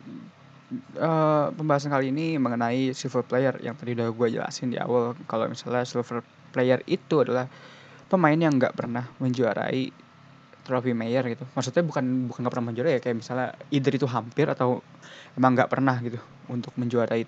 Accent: native